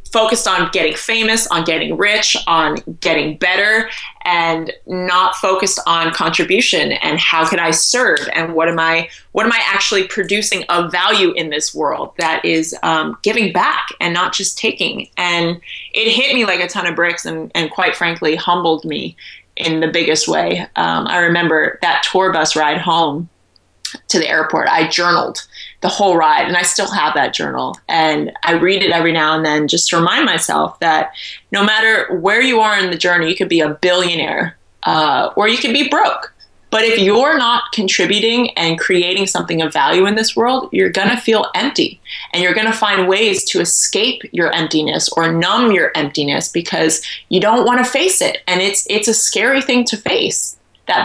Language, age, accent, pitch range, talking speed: English, 20-39, American, 165-220 Hz, 195 wpm